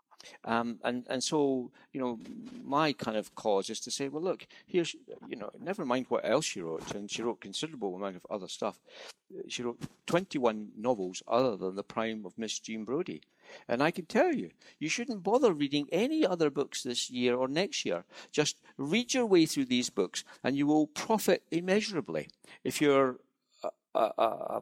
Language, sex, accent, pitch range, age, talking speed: English, male, British, 120-195 Hz, 60-79, 190 wpm